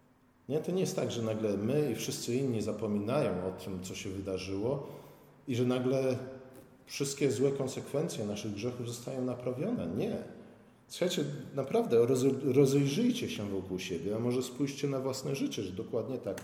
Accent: native